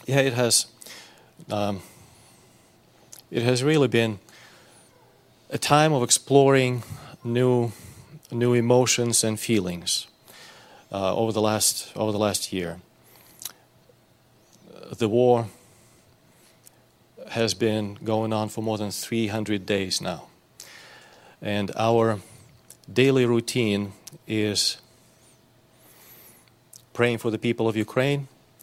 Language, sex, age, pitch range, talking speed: English, male, 40-59, 105-125 Hz, 100 wpm